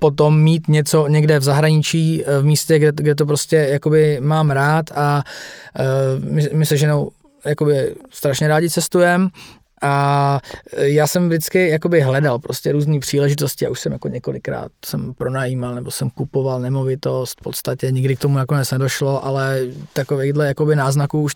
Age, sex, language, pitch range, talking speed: 20-39, male, Slovak, 130-150 Hz, 155 wpm